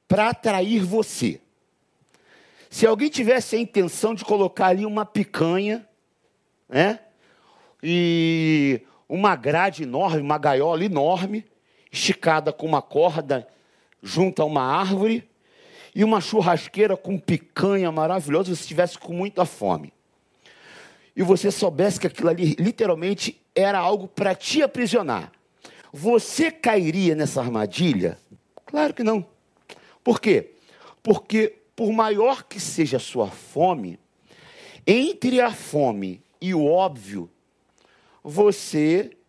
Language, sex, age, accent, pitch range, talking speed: Portuguese, male, 50-69, Brazilian, 150-215 Hz, 115 wpm